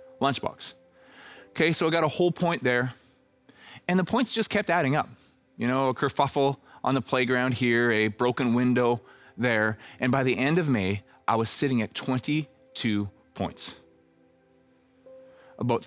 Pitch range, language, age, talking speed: 110-135 Hz, English, 30-49, 155 wpm